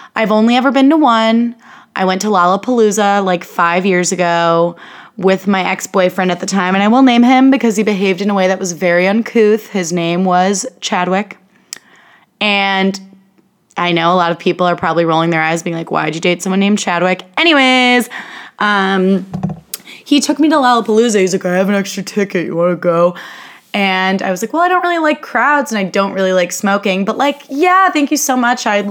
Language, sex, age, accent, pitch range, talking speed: English, female, 20-39, American, 180-220 Hz, 210 wpm